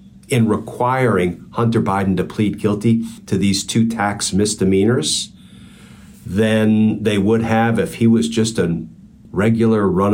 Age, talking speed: 50-69, 135 wpm